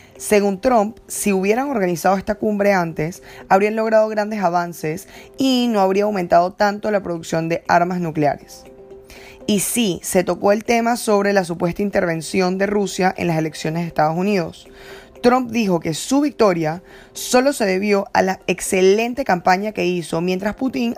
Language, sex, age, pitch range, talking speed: English, female, 10-29, 175-215 Hz, 160 wpm